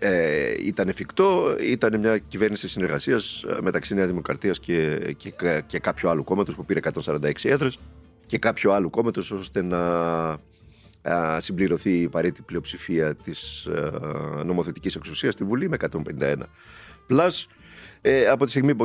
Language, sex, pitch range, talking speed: Greek, male, 85-115 Hz, 135 wpm